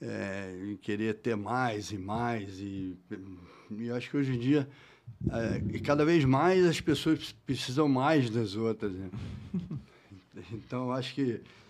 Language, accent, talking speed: Portuguese, Brazilian, 145 wpm